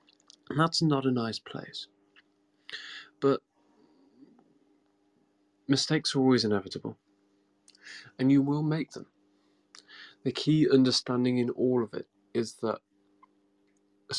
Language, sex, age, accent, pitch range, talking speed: English, male, 20-39, British, 100-125 Hz, 105 wpm